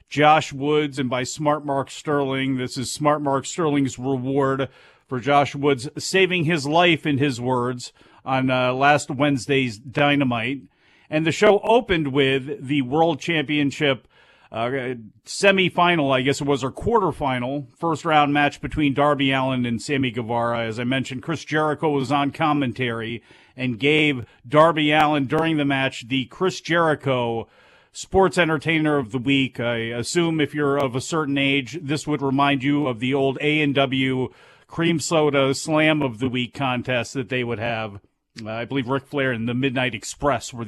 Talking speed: 165 wpm